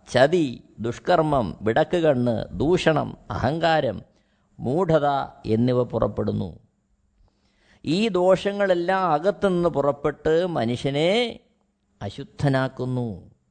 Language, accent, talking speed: Malayalam, native, 65 wpm